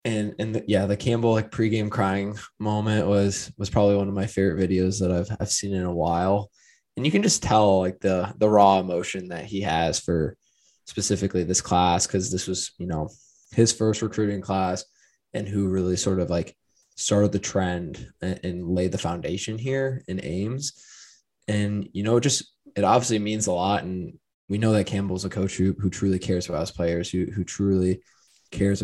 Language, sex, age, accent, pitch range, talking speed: English, male, 20-39, American, 95-110 Hz, 200 wpm